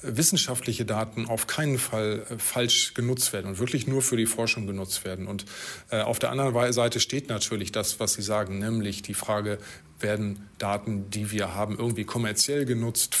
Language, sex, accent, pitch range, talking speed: German, male, German, 105-125 Hz, 175 wpm